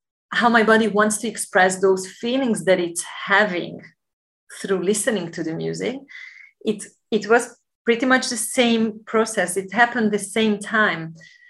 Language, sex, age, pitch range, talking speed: English, female, 30-49, 185-235 Hz, 150 wpm